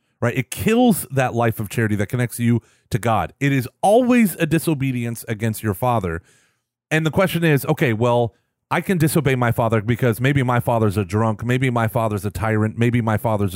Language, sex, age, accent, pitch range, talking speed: English, male, 30-49, American, 115-155 Hz, 200 wpm